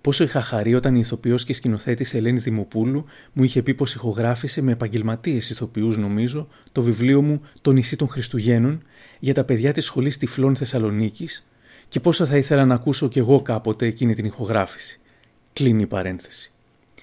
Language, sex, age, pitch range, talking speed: Greek, male, 30-49, 115-140 Hz, 170 wpm